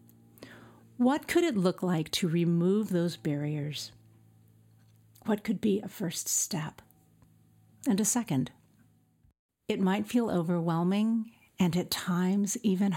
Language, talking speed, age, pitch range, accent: English, 120 wpm, 50-69, 145-200 Hz, American